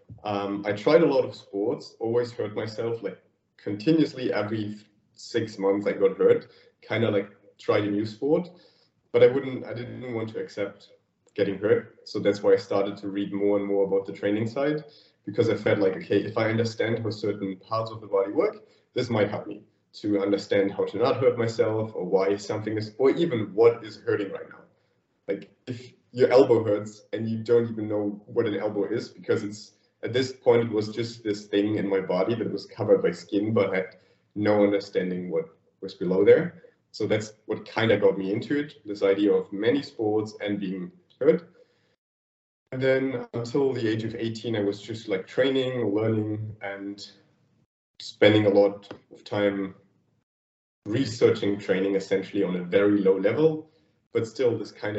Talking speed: 190 wpm